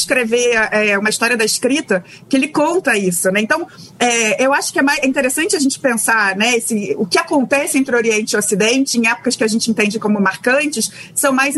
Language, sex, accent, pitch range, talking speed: Portuguese, female, Brazilian, 210-265 Hz, 225 wpm